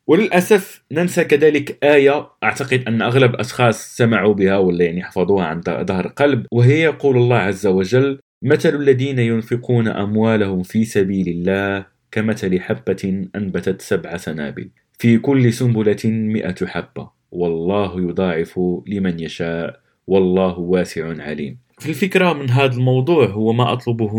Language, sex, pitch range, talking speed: Arabic, male, 95-125 Hz, 130 wpm